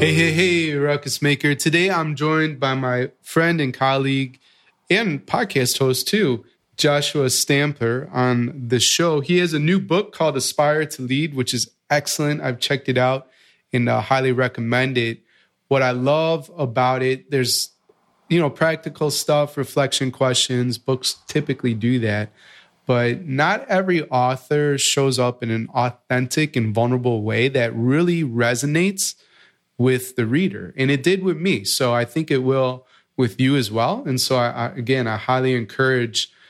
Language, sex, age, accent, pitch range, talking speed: English, male, 20-39, American, 120-145 Hz, 160 wpm